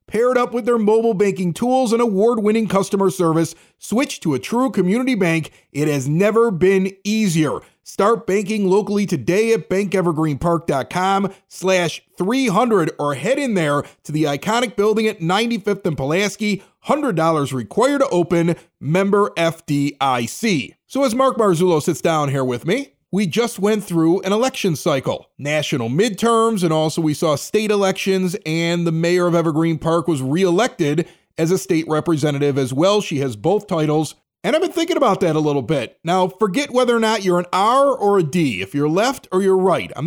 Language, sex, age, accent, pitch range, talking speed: English, male, 30-49, American, 165-220 Hz, 175 wpm